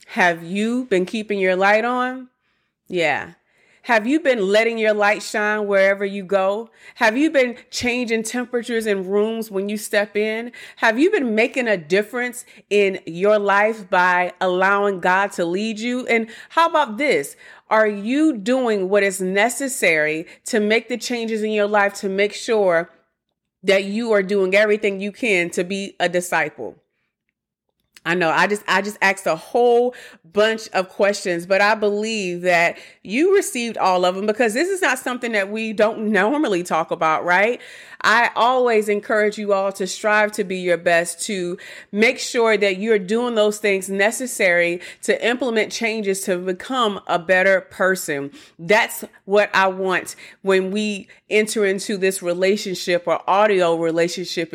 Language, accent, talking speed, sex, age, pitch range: English, American, 165 wpm, female, 30-49, 190-230 Hz